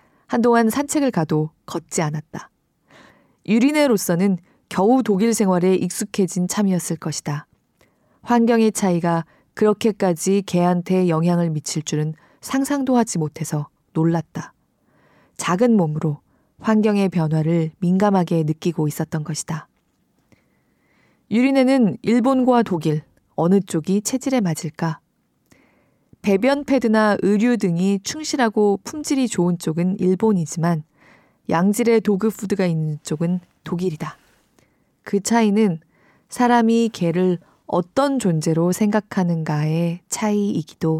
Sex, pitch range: female, 165-225 Hz